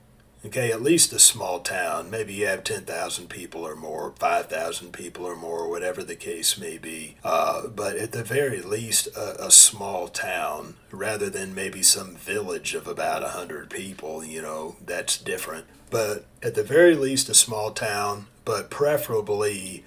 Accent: American